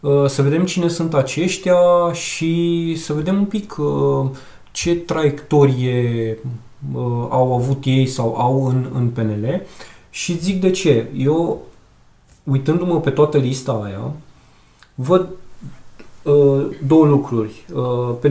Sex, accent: male, native